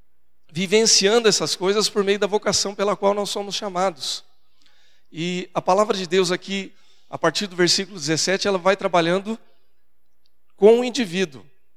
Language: Portuguese